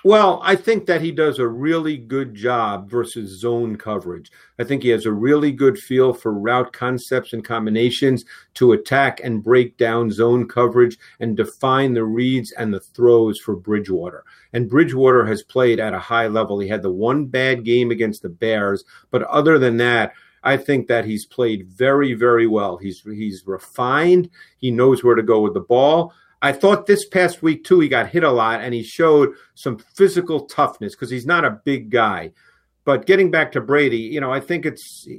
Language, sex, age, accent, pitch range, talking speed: English, male, 50-69, American, 120-155 Hz, 195 wpm